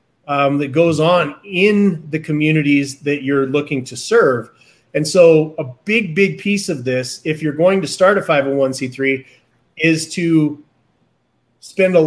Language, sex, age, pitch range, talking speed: English, male, 30-49, 135-165 Hz, 155 wpm